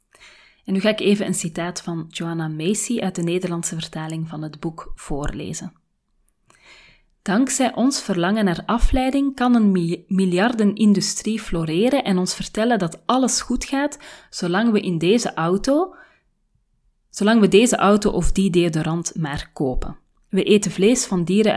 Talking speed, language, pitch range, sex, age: 135 wpm, Dutch, 175-230 Hz, female, 30-49